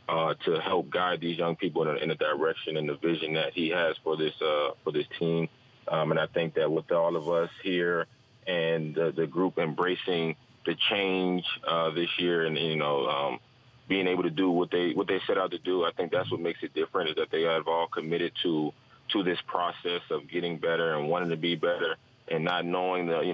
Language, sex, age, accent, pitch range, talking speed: English, male, 30-49, American, 80-100 Hz, 225 wpm